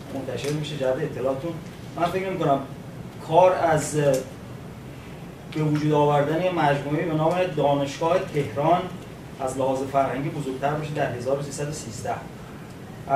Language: Persian